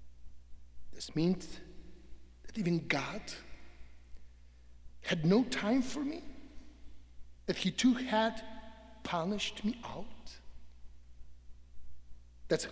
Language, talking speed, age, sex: English, 85 wpm, 60-79, male